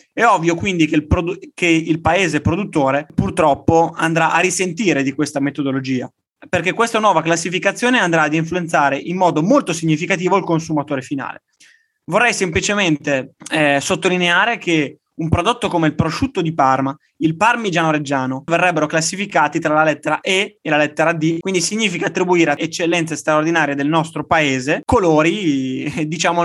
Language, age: Italian, 20-39